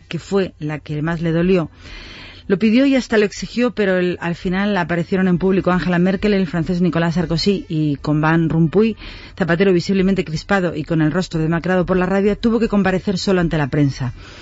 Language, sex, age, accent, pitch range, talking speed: Spanish, female, 40-59, Spanish, 165-200 Hz, 200 wpm